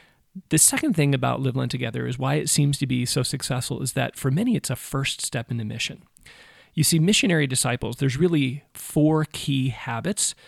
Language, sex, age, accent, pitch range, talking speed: English, male, 40-59, American, 130-150 Hz, 200 wpm